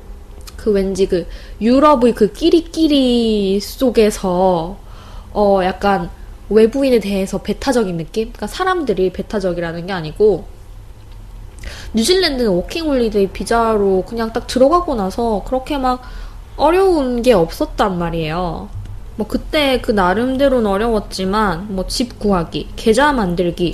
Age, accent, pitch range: 20-39, native, 180-240 Hz